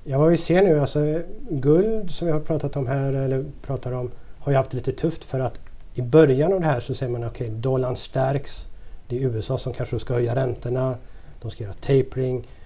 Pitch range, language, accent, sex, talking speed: 120-140 Hz, Swedish, native, male, 225 wpm